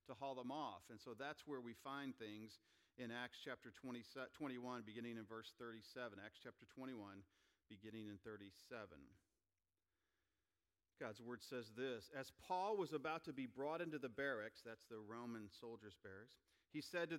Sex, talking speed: male, 165 wpm